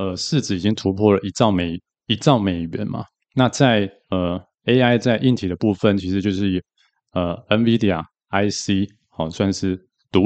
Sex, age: male, 20-39